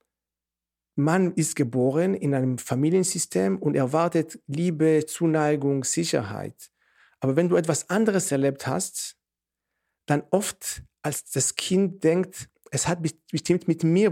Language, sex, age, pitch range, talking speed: German, male, 50-69, 130-180 Hz, 125 wpm